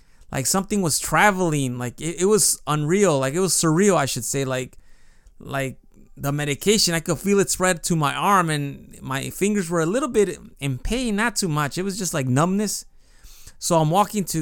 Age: 20-39